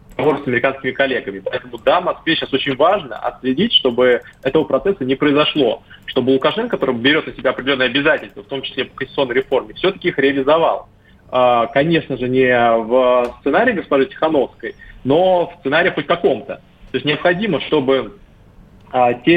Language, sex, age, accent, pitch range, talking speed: Russian, male, 20-39, native, 130-160 Hz, 150 wpm